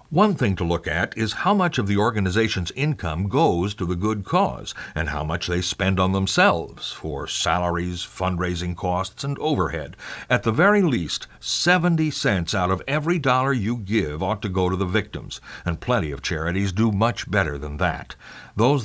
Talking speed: 185 wpm